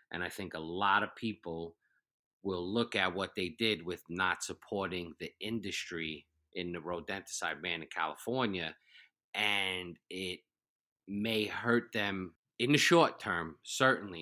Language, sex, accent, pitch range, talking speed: English, male, American, 85-110 Hz, 145 wpm